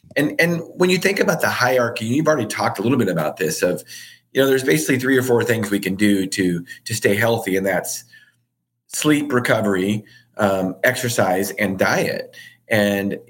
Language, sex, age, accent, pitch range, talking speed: English, male, 40-59, American, 105-155 Hz, 185 wpm